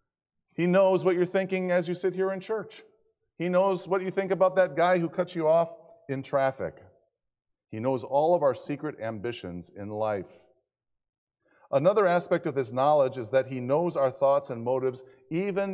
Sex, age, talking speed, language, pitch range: male, 50-69, 185 wpm, English, 120-180 Hz